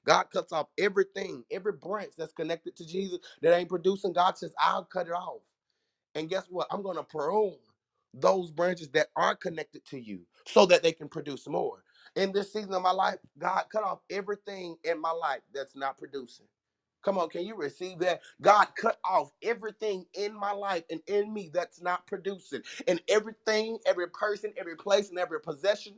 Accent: American